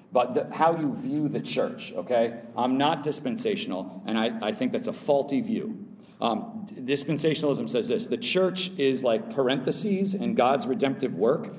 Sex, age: male, 40-59